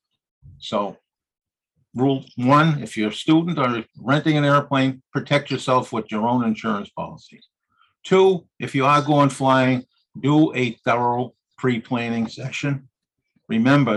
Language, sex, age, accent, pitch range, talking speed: English, male, 50-69, American, 110-135 Hz, 130 wpm